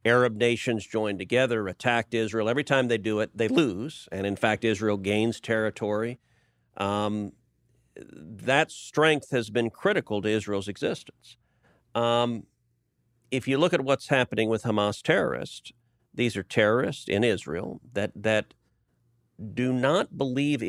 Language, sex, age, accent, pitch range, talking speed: English, male, 50-69, American, 105-120 Hz, 140 wpm